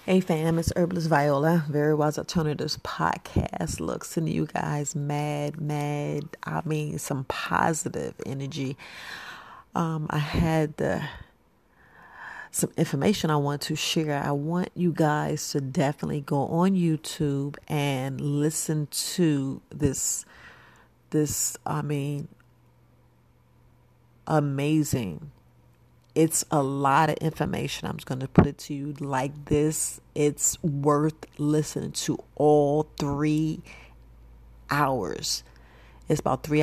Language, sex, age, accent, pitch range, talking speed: English, female, 40-59, American, 140-155 Hz, 120 wpm